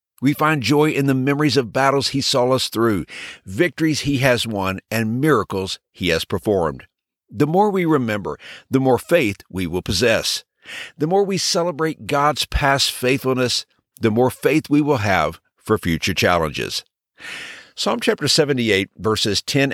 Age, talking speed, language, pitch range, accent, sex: 50-69, 160 wpm, English, 105-150 Hz, American, male